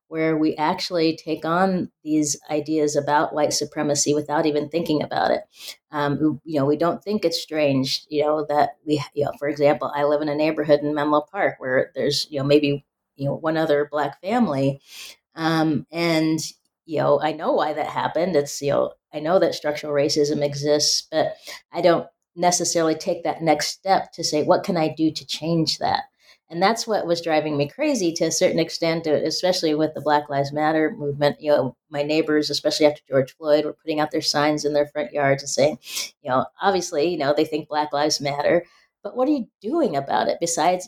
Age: 30-49